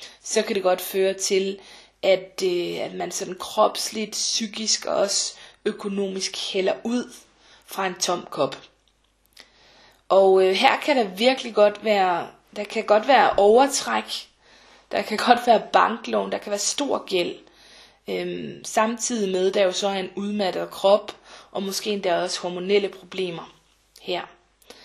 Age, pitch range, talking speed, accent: 20-39, 185-215 Hz, 150 wpm, native